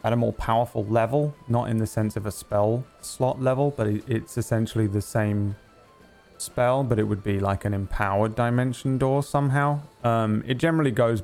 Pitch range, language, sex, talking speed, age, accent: 100-115 Hz, English, male, 180 wpm, 20-39, British